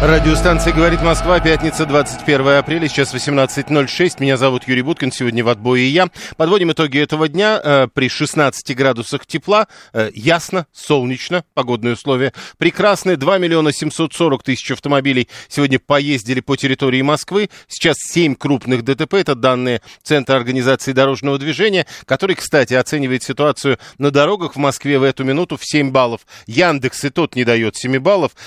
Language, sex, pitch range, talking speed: Russian, male, 130-155 Hz, 150 wpm